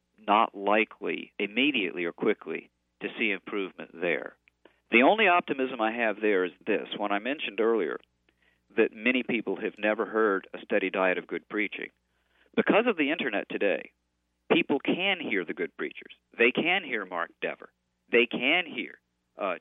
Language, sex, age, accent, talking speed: English, male, 50-69, American, 160 wpm